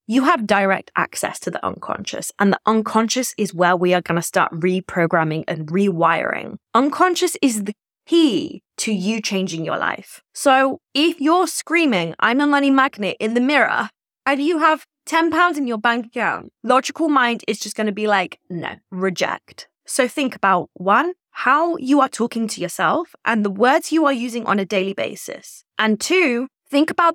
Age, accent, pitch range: 20-39, British, 210-275 Hz